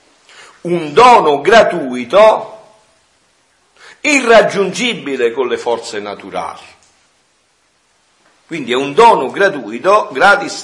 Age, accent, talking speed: 50-69, native, 80 wpm